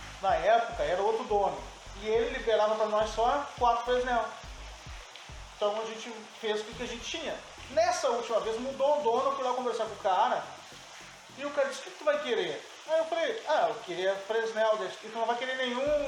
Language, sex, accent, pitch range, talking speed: Portuguese, male, Brazilian, 210-260 Hz, 215 wpm